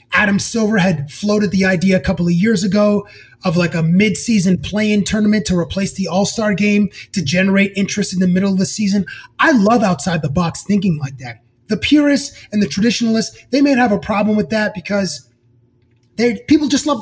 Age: 20-39